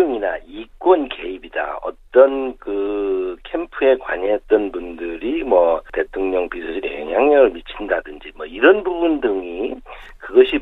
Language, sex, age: Korean, male, 50-69